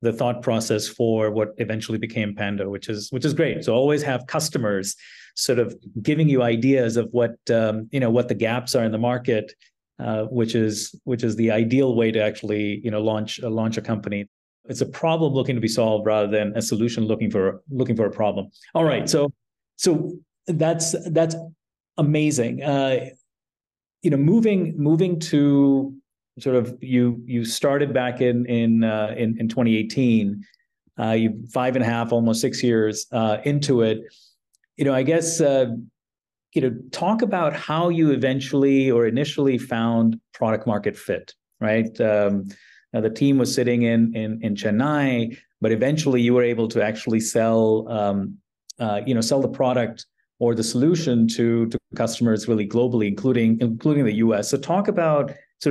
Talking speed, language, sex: 180 wpm, English, male